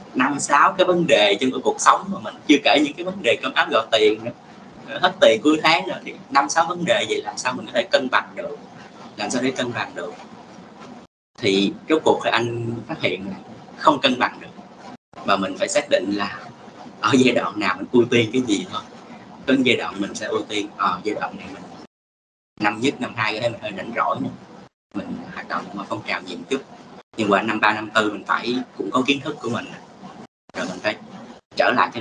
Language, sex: Vietnamese, male